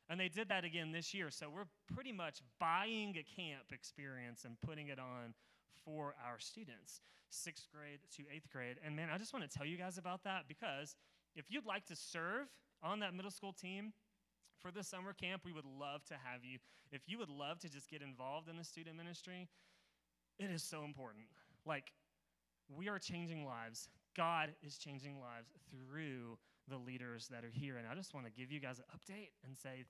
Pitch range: 140-175 Hz